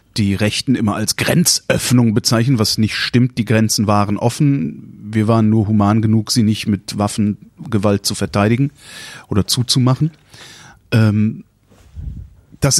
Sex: male